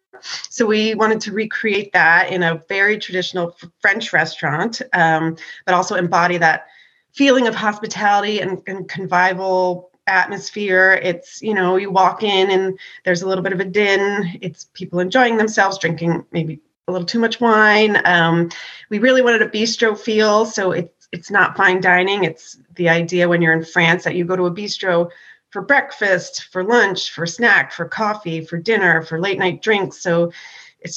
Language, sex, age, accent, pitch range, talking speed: English, female, 30-49, American, 170-210 Hz, 175 wpm